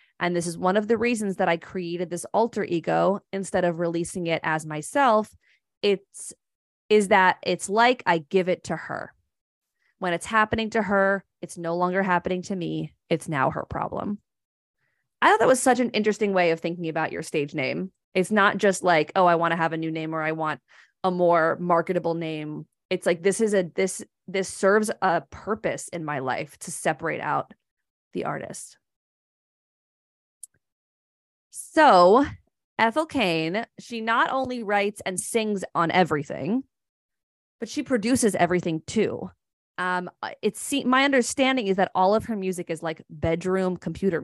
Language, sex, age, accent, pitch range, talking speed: English, female, 20-39, American, 175-220 Hz, 170 wpm